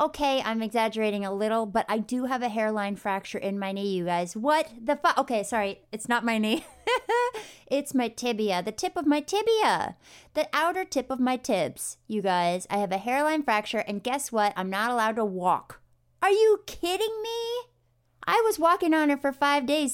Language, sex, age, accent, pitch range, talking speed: English, female, 30-49, American, 200-270 Hz, 200 wpm